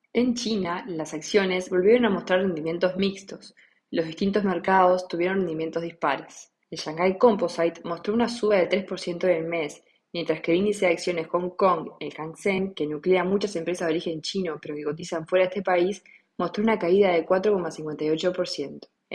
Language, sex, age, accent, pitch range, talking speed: English, female, 20-39, Argentinian, 160-190 Hz, 170 wpm